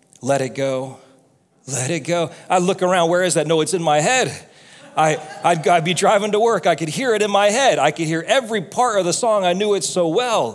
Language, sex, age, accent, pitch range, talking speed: English, male, 40-59, American, 150-195 Hz, 245 wpm